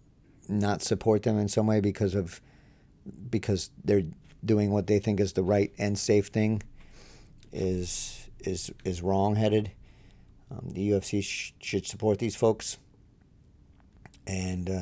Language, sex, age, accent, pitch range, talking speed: English, male, 50-69, American, 95-105 Hz, 135 wpm